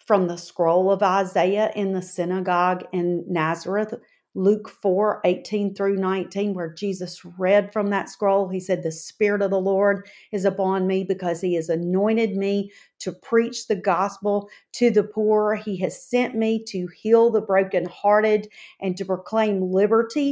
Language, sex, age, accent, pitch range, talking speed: English, female, 40-59, American, 185-225 Hz, 160 wpm